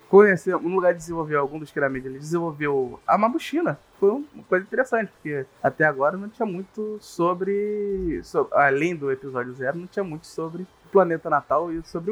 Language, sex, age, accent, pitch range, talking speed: Portuguese, male, 20-39, Brazilian, 140-190 Hz, 185 wpm